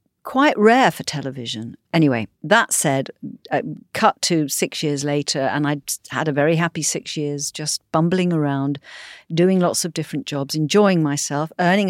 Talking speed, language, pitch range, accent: 160 wpm, English, 140-180 Hz, British